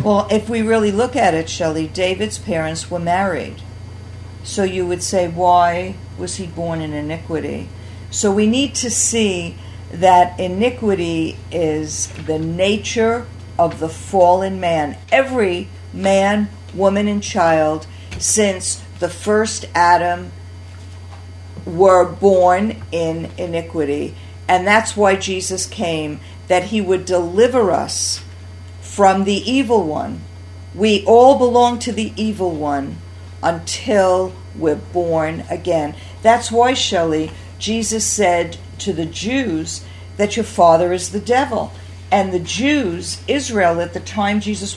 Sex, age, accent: female, 50-69, American